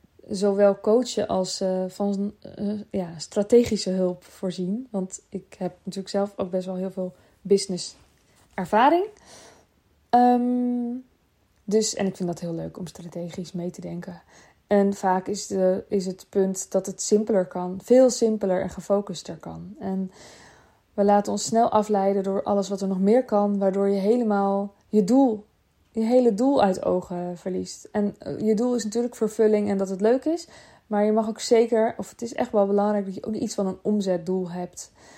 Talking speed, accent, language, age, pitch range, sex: 170 wpm, Dutch, Dutch, 20-39, 190-230 Hz, female